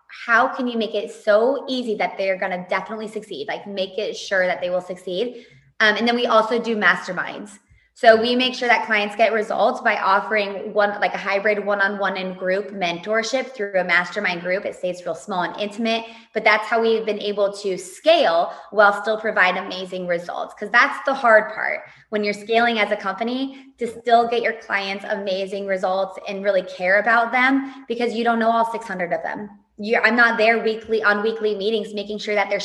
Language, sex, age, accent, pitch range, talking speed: English, female, 20-39, American, 190-225 Hz, 205 wpm